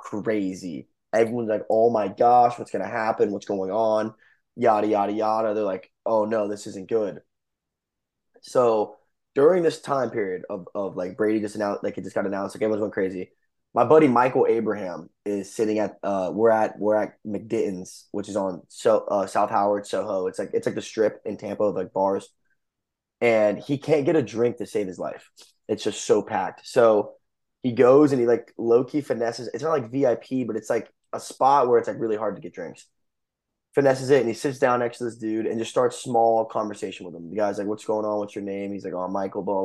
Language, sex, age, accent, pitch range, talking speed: English, male, 20-39, American, 100-120 Hz, 220 wpm